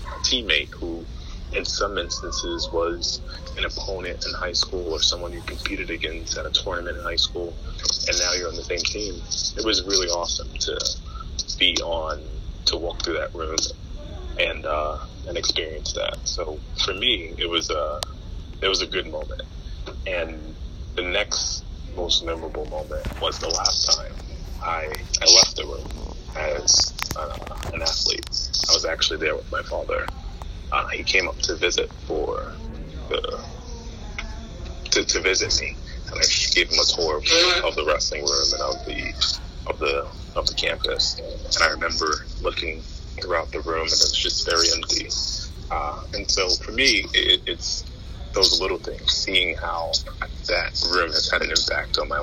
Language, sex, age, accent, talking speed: English, male, 30-49, American, 170 wpm